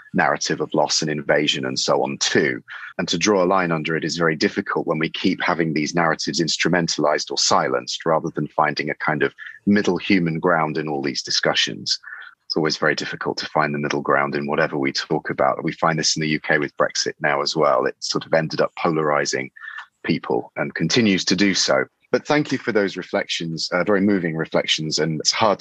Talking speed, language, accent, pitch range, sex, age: 215 wpm, English, British, 75-105 Hz, male, 30-49